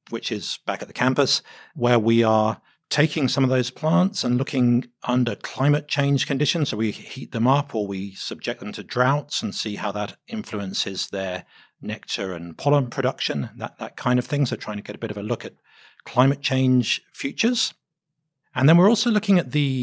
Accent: British